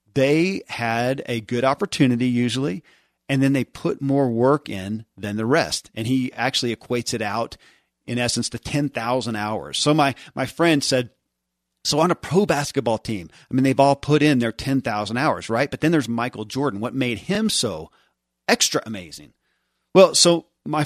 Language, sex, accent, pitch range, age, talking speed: English, male, American, 115-140 Hz, 40-59, 180 wpm